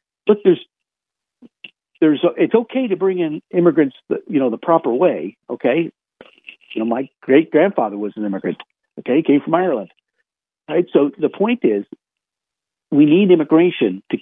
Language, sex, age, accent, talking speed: English, male, 50-69, American, 160 wpm